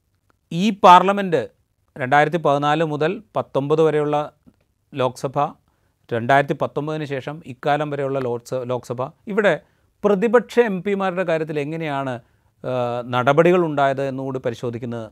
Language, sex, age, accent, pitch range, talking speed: Malayalam, male, 30-49, native, 125-165 Hz, 95 wpm